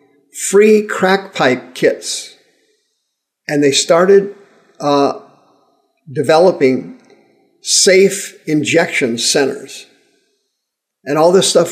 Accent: American